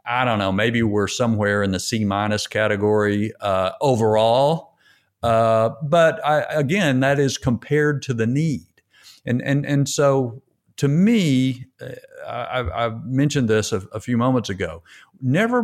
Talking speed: 150 wpm